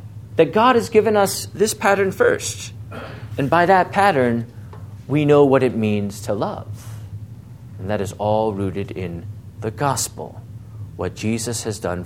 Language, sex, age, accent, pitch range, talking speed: English, male, 50-69, American, 105-130 Hz, 155 wpm